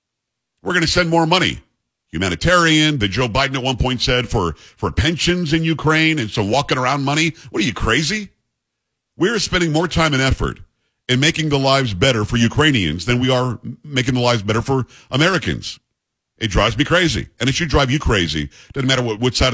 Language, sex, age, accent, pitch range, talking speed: English, male, 50-69, American, 115-150 Hz, 200 wpm